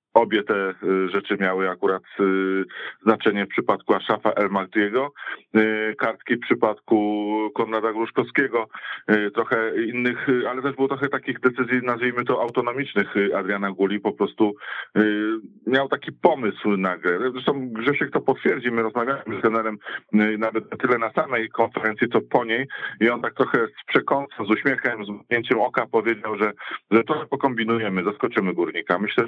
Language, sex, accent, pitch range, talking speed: Polish, male, native, 105-125 Hz, 150 wpm